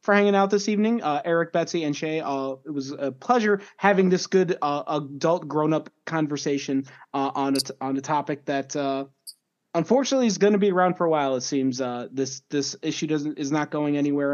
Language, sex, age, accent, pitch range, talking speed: English, male, 20-39, American, 140-190 Hz, 215 wpm